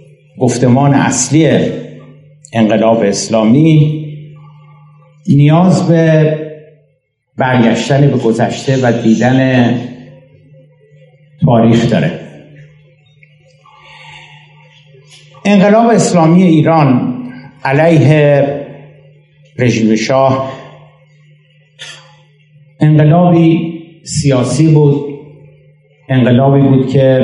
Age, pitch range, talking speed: 60-79, 125-150 Hz, 55 wpm